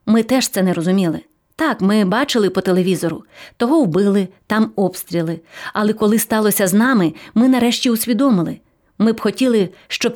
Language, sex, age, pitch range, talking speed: English, female, 30-49, 195-250 Hz, 155 wpm